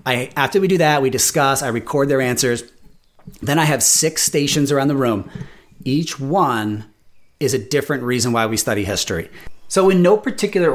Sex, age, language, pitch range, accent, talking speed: male, 30-49, English, 125-170 Hz, American, 180 wpm